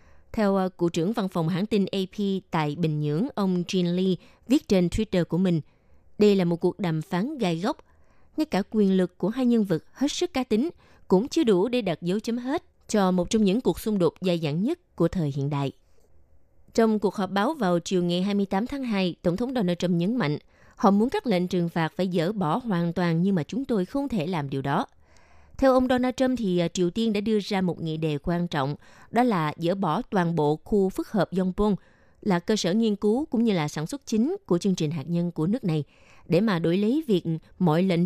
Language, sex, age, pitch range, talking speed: Vietnamese, female, 20-39, 170-220 Hz, 235 wpm